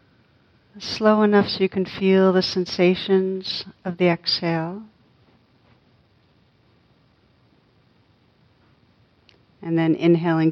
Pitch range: 165-185 Hz